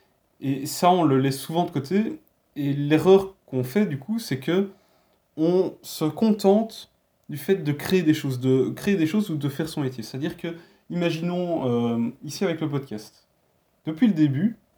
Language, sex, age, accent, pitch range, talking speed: French, male, 20-39, French, 135-185 Hz, 185 wpm